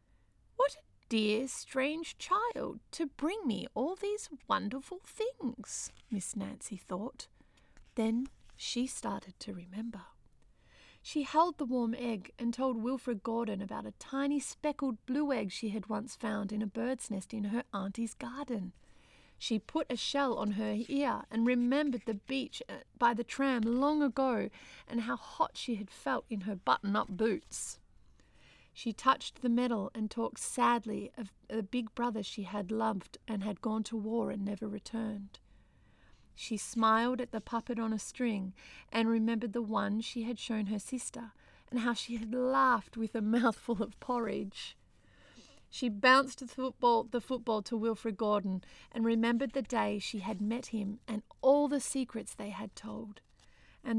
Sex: female